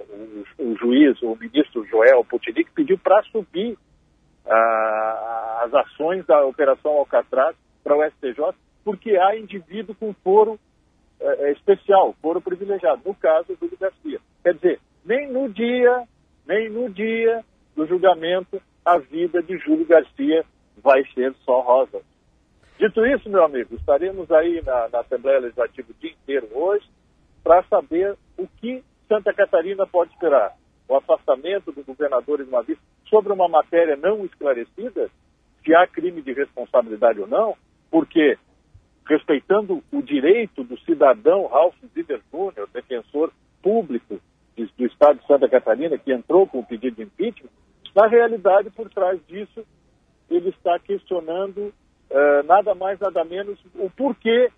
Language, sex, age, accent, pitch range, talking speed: Portuguese, male, 50-69, Brazilian, 160-245 Hz, 135 wpm